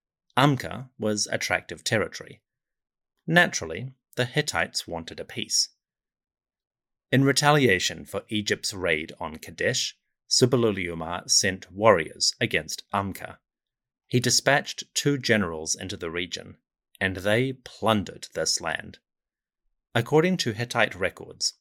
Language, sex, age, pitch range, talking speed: English, male, 30-49, 105-135 Hz, 105 wpm